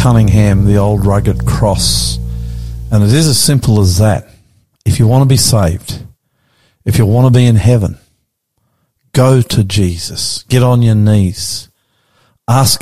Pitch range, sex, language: 100-120 Hz, male, English